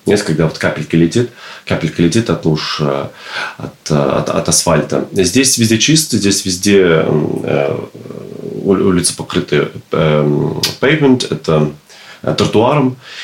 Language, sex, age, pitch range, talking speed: Russian, male, 30-49, 80-100 Hz, 105 wpm